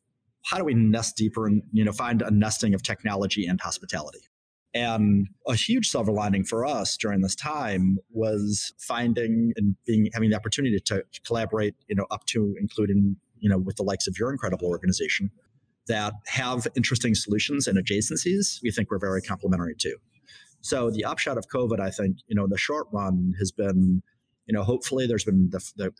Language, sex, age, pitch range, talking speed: English, male, 30-49, 95-115 Hz, 190 wpm